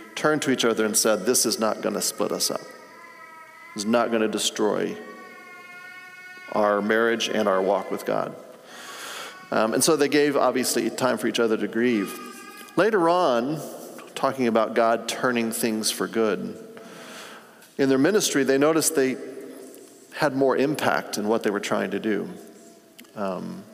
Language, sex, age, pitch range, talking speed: English, male, 40-59, 110-145 Hz, 160 wpm